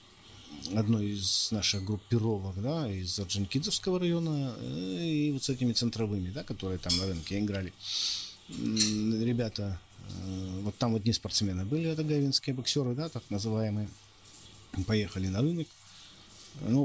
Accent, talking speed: native, 130 wpm